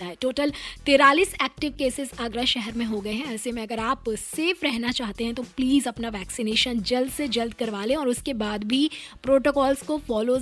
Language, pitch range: Hindi, 245-300 Hz